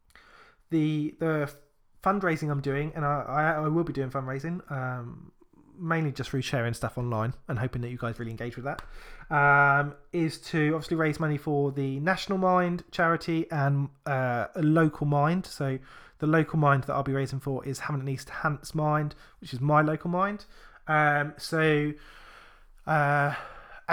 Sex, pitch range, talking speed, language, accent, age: male, 135-160 Hz, 170 wpm, English, British, 20-39